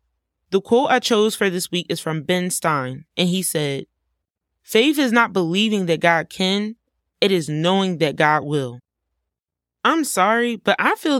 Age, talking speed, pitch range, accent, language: 20-39, 170 wpm, 160-220 Hz, American, English